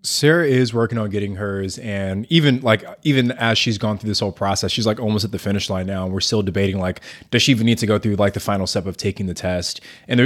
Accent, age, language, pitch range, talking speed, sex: American, 20-39, English, 95-110 Hz, 270 wpm, male